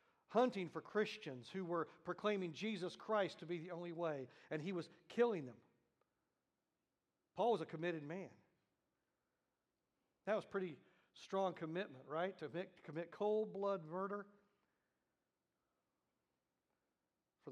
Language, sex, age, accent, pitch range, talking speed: English, male, 50-69, American, 165-220 Hz, 125 wpm